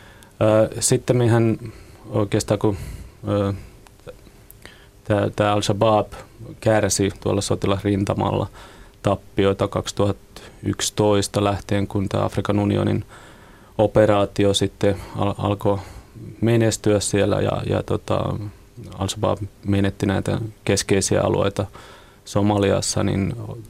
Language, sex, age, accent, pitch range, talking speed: Finnish, male, 30-49, native, 100-110 Hz, 80 wpm